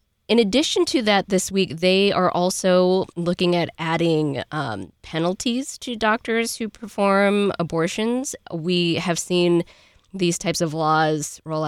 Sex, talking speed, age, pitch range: female, 140 wpm, 20-39, 165-205 Hz